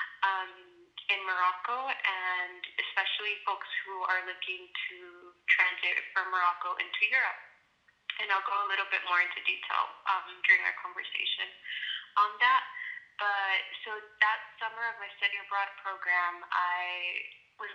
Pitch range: 185-235 Hz